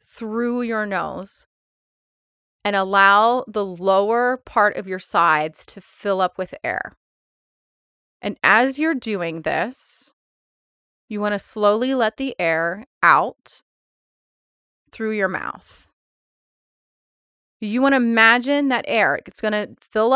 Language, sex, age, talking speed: English, female, 30-49, 125 wpm